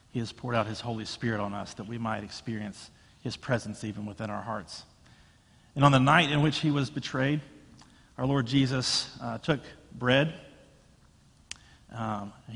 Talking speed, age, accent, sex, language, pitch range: 165 wpm, 40-59, American, male, English, 110-140 Hz